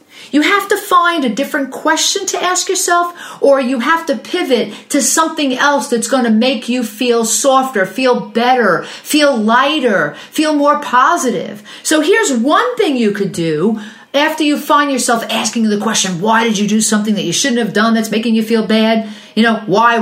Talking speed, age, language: 190 wpm, 50-69, English